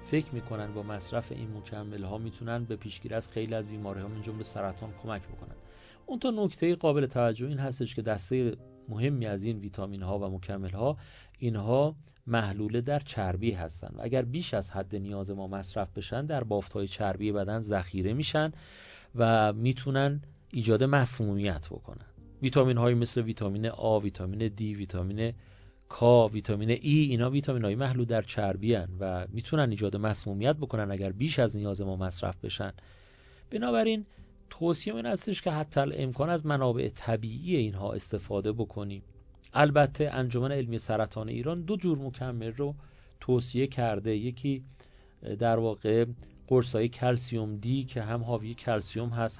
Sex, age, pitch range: male, 40-59, 100-130 Hz